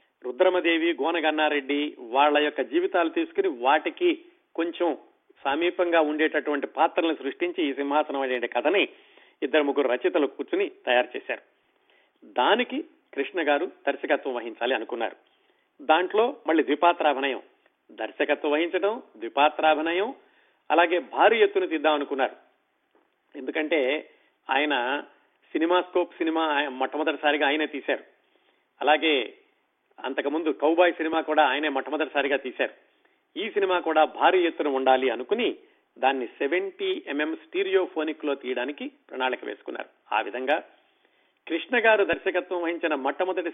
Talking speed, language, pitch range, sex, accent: 105 wpm, Telugu, 150-215 Hz, male, native